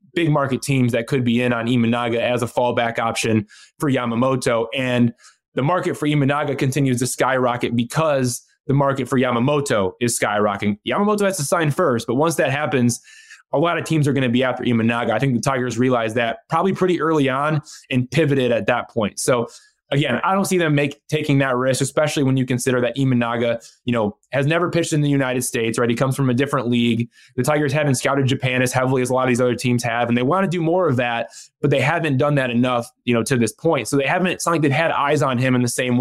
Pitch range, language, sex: 120-145 Hz, English, male